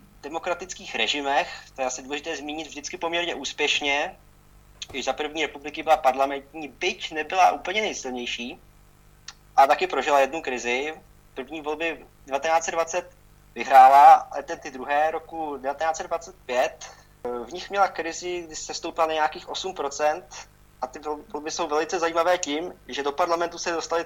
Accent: native